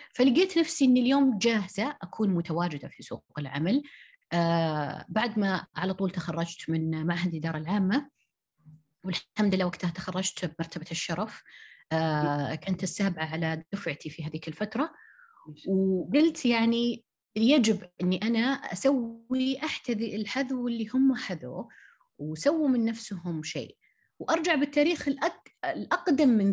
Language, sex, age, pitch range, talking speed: Arabic, female, 30-49, 165-245 Hz, 120 wpm